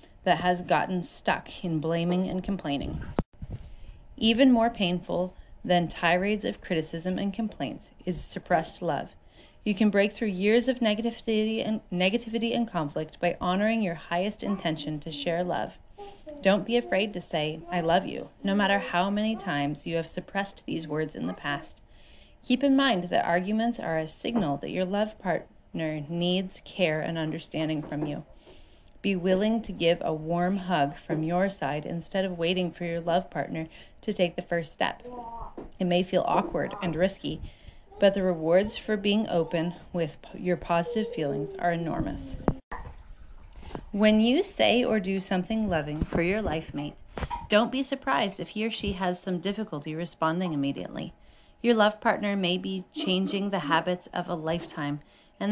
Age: 30-49